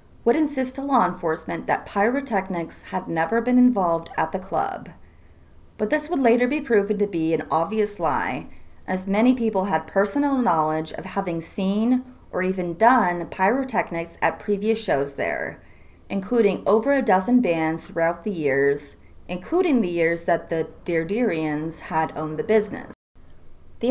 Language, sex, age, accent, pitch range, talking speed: English, female, 30-49, American, 160-225 Hz, 155 wpm